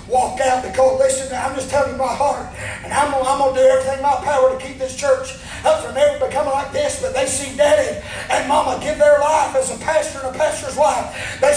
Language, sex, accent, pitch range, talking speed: English, male, American, 280-320 Hz, 235 wpm